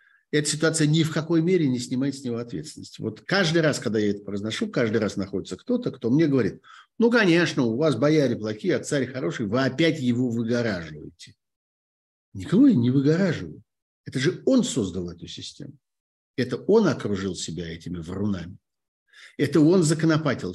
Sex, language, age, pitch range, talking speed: male, Russian, 50-69, 100-150 Hz, 165 wpm